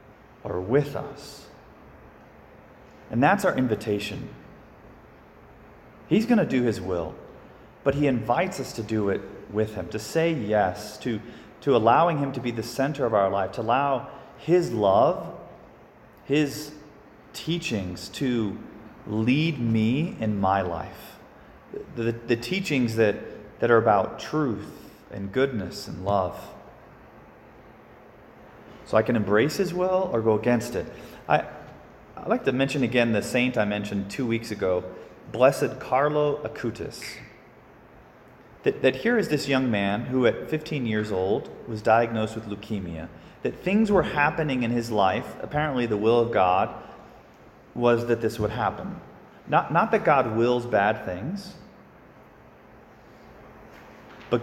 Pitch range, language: 105-145 Hz, English